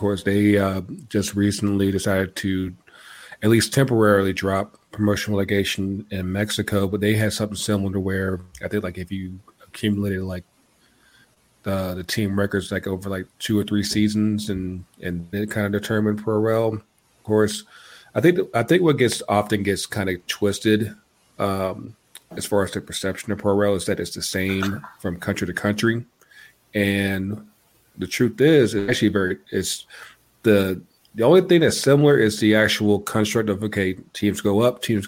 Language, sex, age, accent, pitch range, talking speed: English, male, 30-49, American, 95-105 Hz, 175 wpm